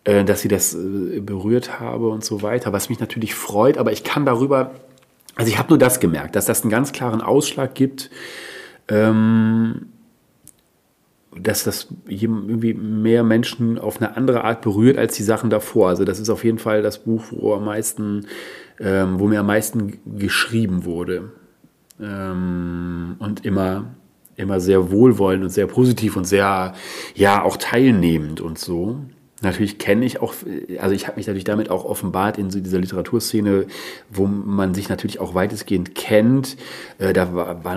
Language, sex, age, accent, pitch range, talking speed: German, male, 40-59, German, 95-115 Hz, 160 wpm